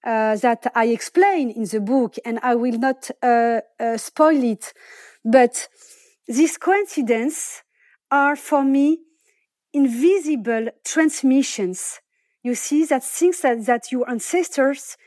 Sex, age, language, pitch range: female, 40-59, English, 235-300 Hz